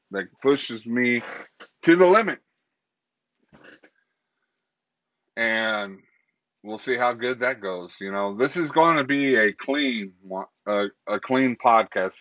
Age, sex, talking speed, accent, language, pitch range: 30-49, male, 130 wpm, American, English, 100-135 Hz